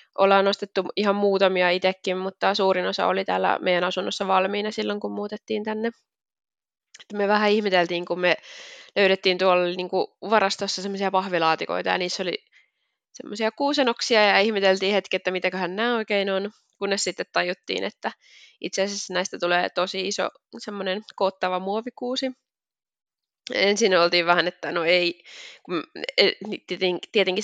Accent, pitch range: native, 185-230 Hz